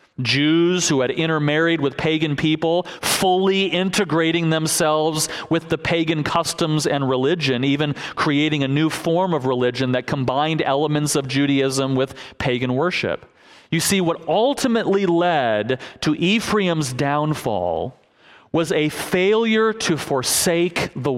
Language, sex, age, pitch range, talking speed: English, male, 40-59, 145-185 Hz, 125 wpm